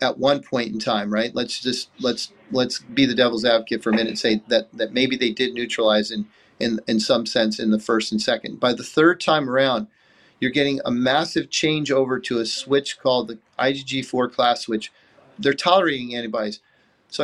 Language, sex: English, male